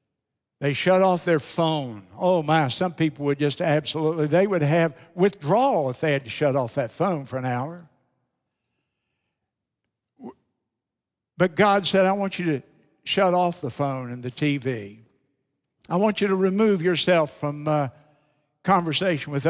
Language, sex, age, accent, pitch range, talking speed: English, male, 60-79, American, 140-185 Hz, 155 wpm